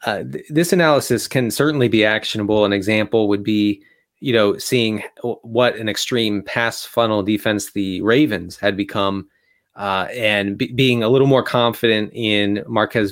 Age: 30-49